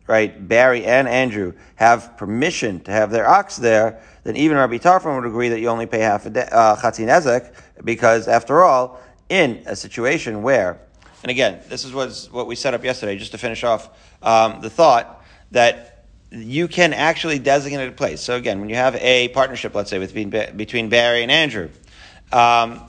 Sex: male